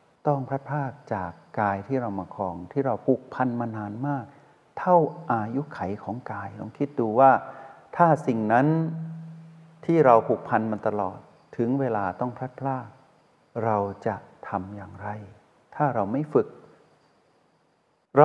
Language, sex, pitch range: Thai, male, 110-150 Hz